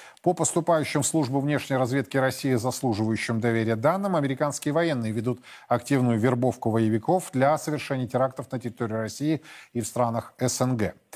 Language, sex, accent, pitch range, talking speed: Russian, male, native, 120-150 Hz, 140 wpm